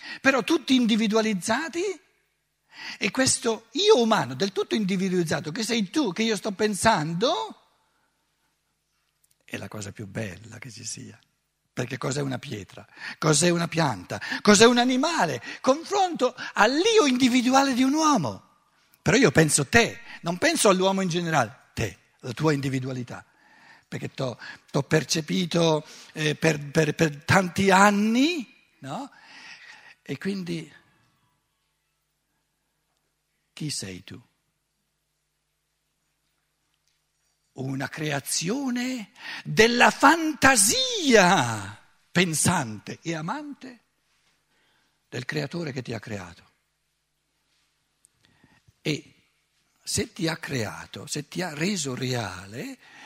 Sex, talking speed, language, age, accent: male, 105 wpm, Italian, 60-79, native